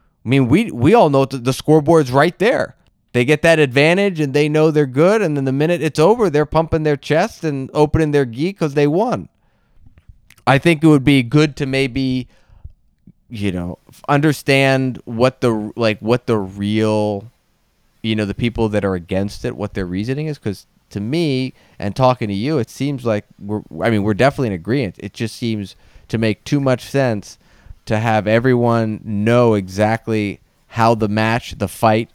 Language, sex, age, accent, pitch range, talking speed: English, male, 30-49, American, 110-145 Hz, 190 wpm